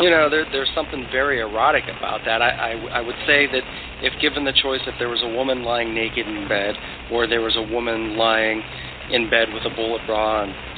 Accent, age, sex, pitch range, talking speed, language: American, 40-59, male, 105-125 Hz, 215 wpm, English